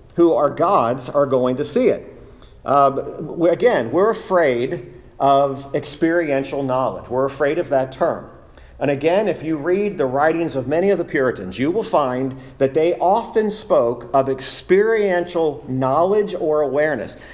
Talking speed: 150 wpm